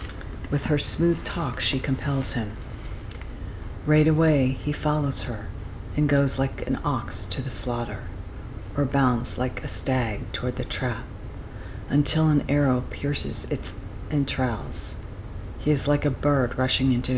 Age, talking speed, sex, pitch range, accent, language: 50-69, 145 wpm, female, 100-135 Hz, American, English